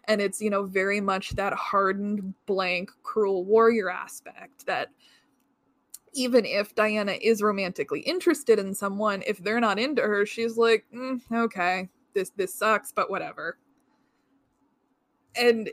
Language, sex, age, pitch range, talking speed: English, female, 20-39, 200-260 Hz, 135 wpm